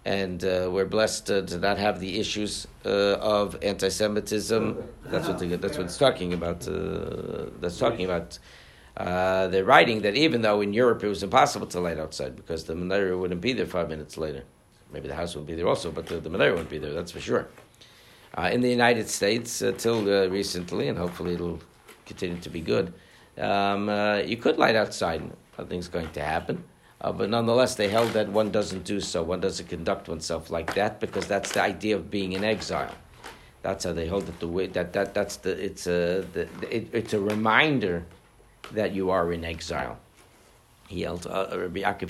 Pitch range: 90-115 Hz